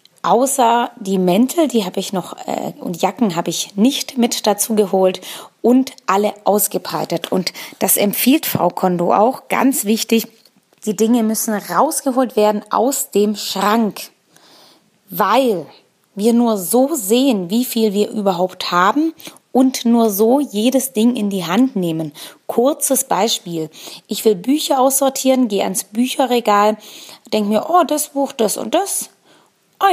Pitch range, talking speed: 195-250 Hz, 145 wpm